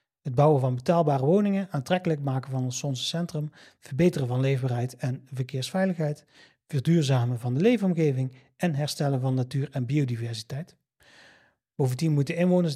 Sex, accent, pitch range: male, Dutch, 130-170 Hz